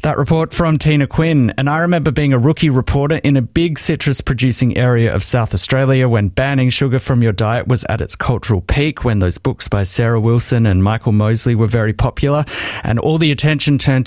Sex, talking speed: male, 210 wpm